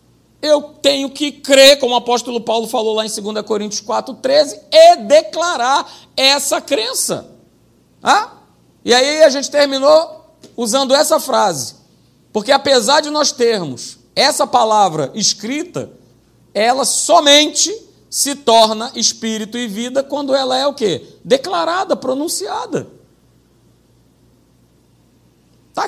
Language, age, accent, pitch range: Portuguese, 50-69, Brazilian, 195-280 Hz